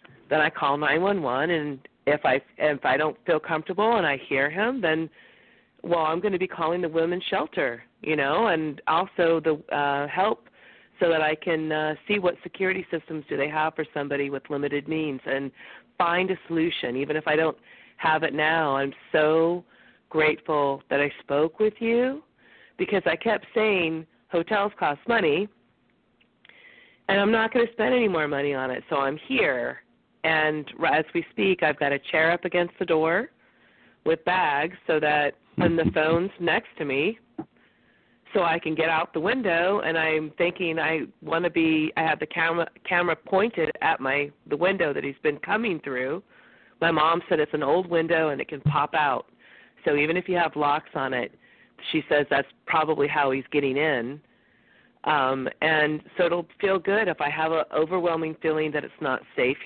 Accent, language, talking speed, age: American, English, 185 wpm, 40-59